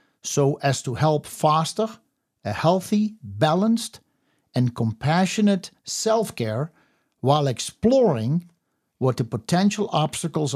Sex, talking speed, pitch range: male, 95 wpm, 135-190 Hz